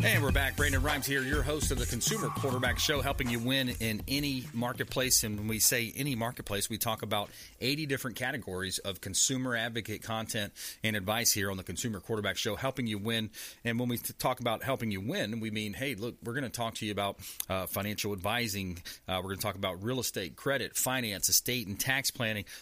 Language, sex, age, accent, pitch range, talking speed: English, male, 40-59, American, 105-125 Hz, 220 wpm